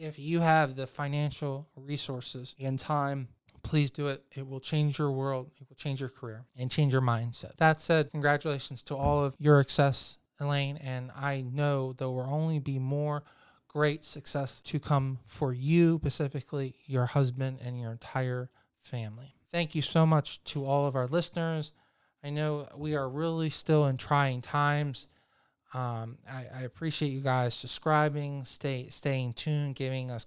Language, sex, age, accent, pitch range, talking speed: English, male, 20-39, American, 130-150 Hz, 165 wpm